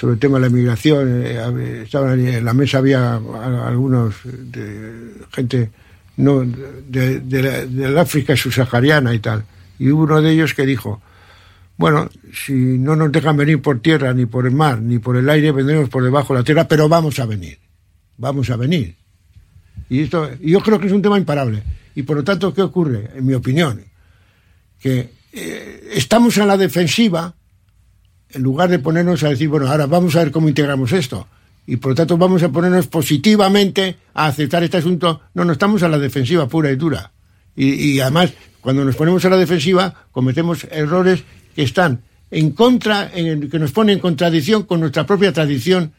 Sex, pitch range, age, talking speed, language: male, 125-170 Hz, 60-79, 185 wpm, Spanish